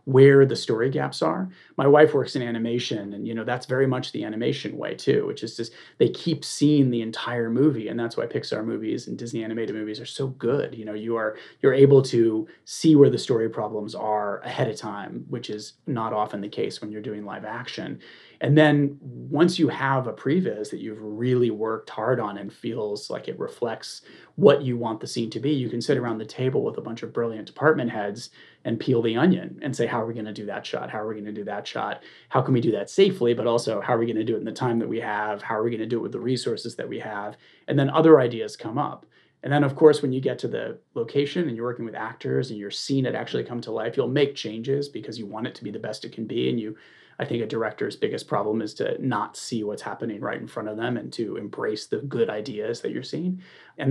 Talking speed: 260 wpm